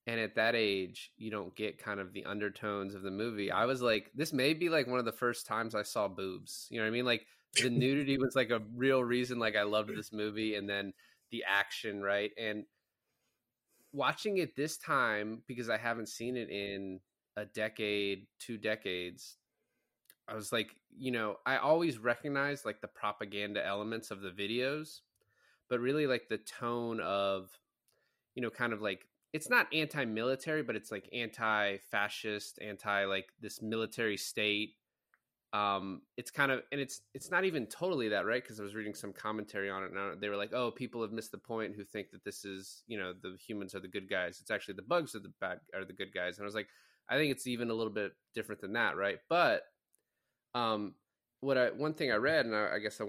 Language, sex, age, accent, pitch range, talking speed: English, male, 20-39, American, 100-125 Hz, 210 wpm